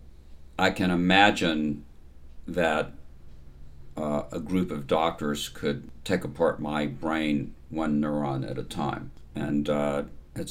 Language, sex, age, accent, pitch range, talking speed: English, male, 60-79, American, 70-75 Hz, 125 wpm